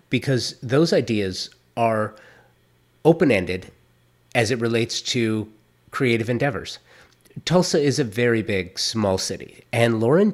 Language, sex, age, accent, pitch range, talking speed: English, male, 30-49, American, 105-135 Hz, 115 wpm